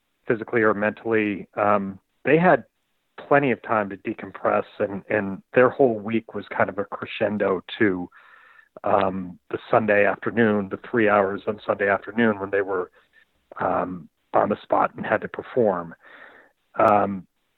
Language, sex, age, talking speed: English, male, 40-59, 150 wpm